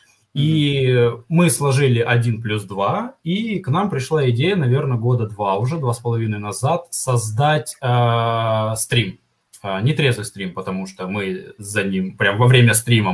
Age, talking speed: 20-39, 160 wpm